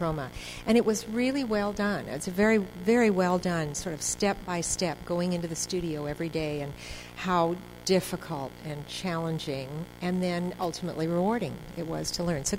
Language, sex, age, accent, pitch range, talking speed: English, female, 50-69, American, 155-185 Hz, 175 wpm